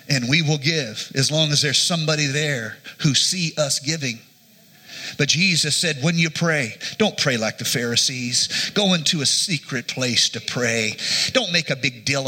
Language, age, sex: English, 40-59, male